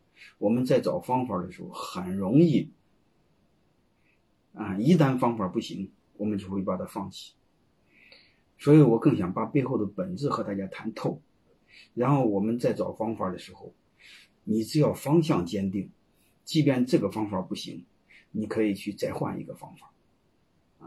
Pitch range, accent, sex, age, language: 105-150 Hz, native, male, 30-49, Chinese